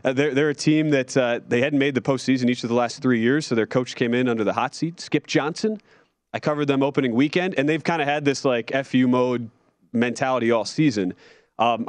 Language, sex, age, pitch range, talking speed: English, male, 30-49, 115-145 Hz, 235 wpm